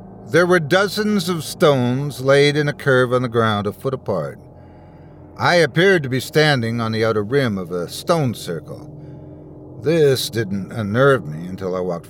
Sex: male